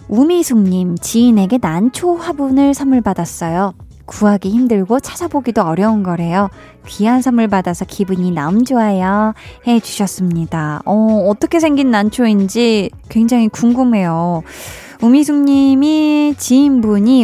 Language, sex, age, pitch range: Korean, female, 20-39, 190-255 Hz